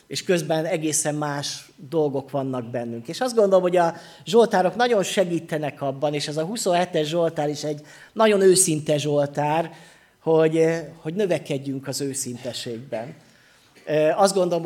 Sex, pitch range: male, 140-175 Hz